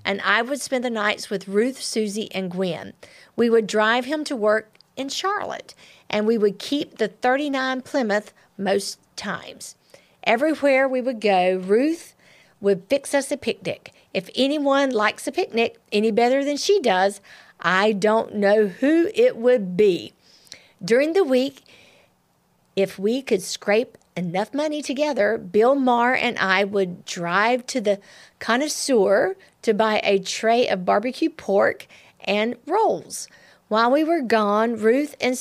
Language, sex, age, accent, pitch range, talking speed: English, female, 50-69, American, 200-260 Hz, 150 wpm